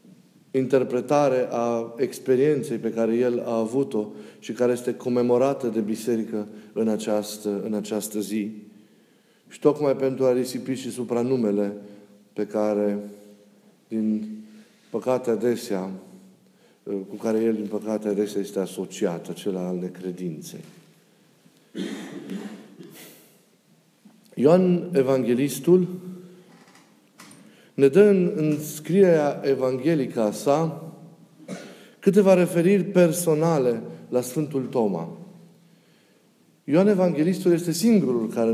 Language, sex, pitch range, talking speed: Romanian, male, 110-170 Hz, 100 wpm